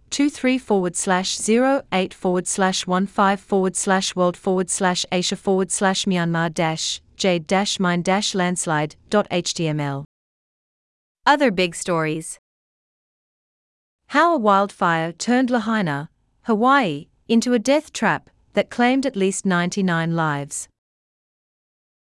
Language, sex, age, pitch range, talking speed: Portuguese, female, 40-59, 170-240 Hz, 115 wpm